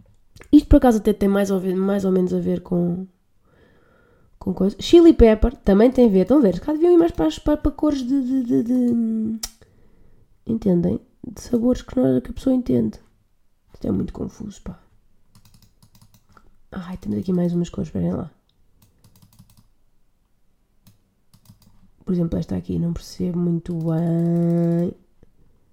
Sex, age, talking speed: female, 20-39, 160 wpm